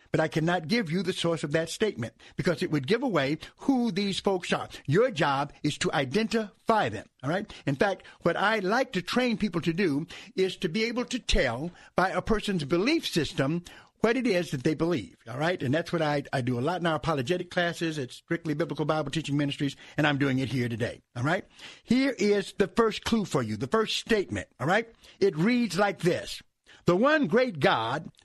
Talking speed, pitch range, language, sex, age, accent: 215 wpm, 160-230 Hz, English, male, 60-79, American